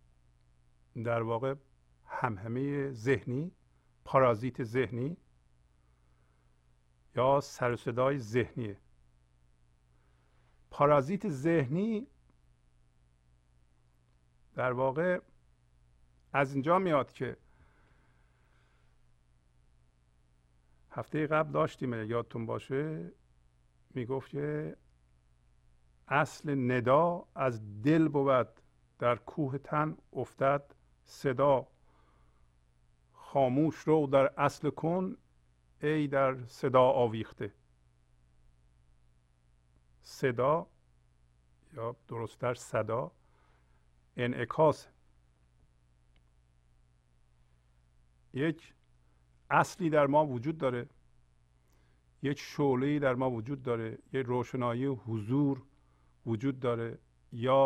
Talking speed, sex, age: 70 wpm, male, 50-69